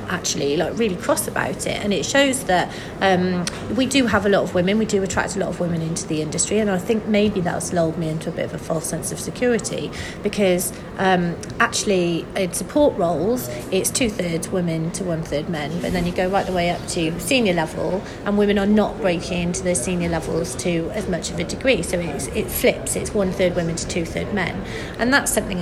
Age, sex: 30-49, female